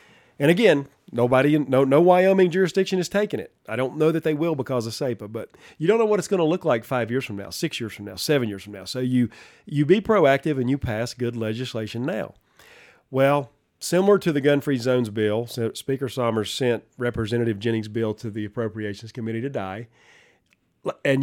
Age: 40-59